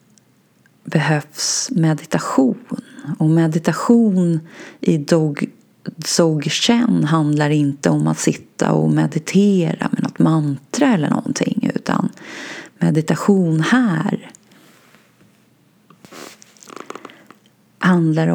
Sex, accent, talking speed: female, native, 70 wpm